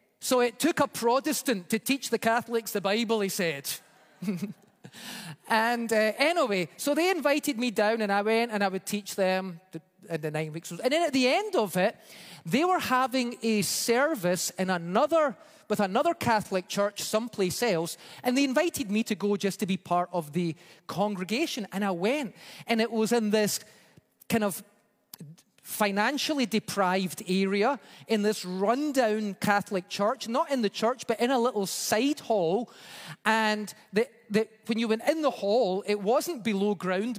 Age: 30-49